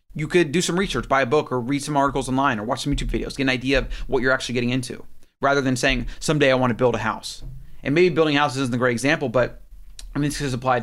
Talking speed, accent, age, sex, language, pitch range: 285 wpm, American, 30-49, male, English, 120-150 Hz